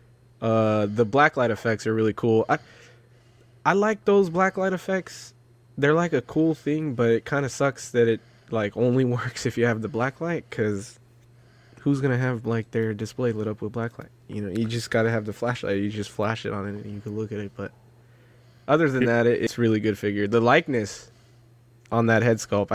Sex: male